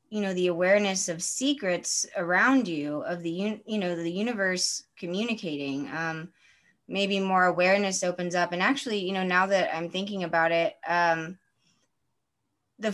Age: 20-39